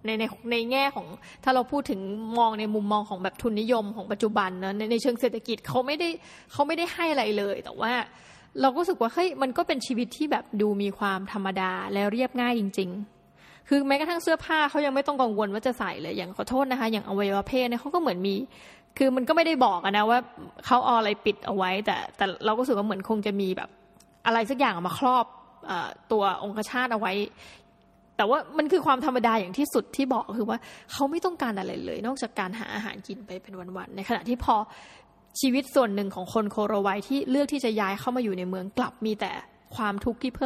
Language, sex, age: Thai, female, 20-39